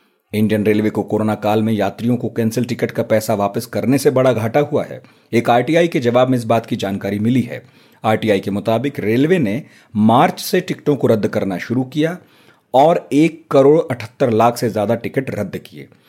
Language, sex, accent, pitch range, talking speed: Hindi, male, native, 110-140 Hz, 200 wpm